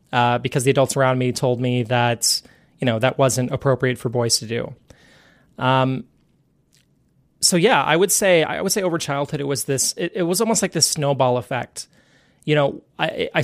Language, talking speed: English, 190 wpm